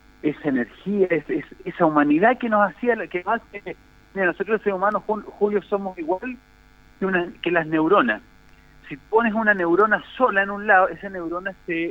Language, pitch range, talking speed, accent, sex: Spanish, 150-200 Hz, 165 wpm, Argentinian, male